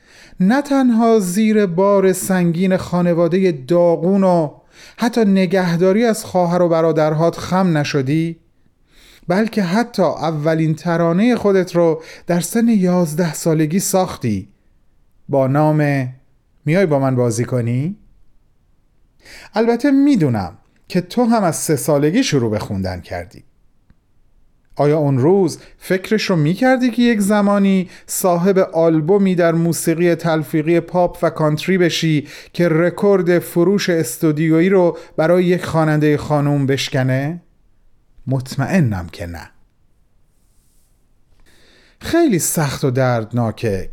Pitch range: 145-190 Hz